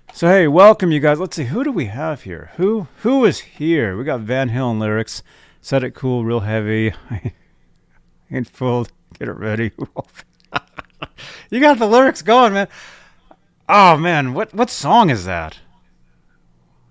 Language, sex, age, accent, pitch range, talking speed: English, male, 30-49, American, 100-165 Hz, 155 wpm